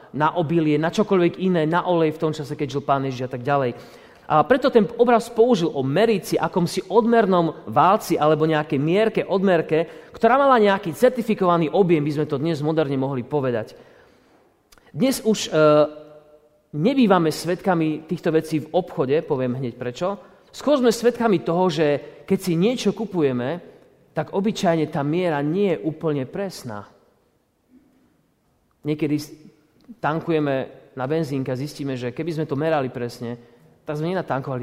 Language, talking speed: Slovak, 150 wpm